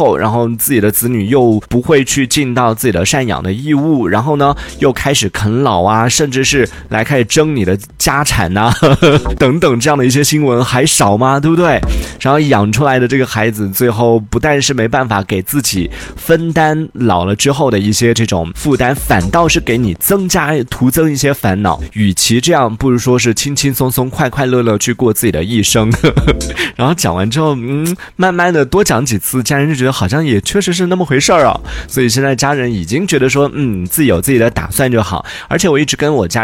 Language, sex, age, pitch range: Chinese, male, 20-39, 105-145 Hz